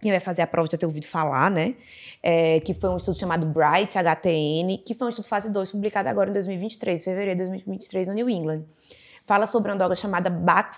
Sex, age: female, 20-39